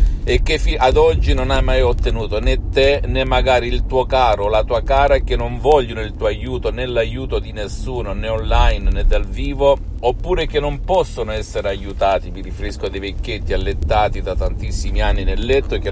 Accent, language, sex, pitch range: native, Italian, male, 95-125 Hz